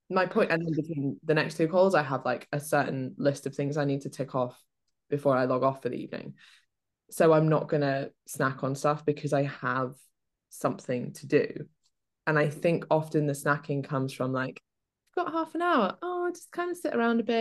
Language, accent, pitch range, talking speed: English, British, 135-190 Hz, 230 wpm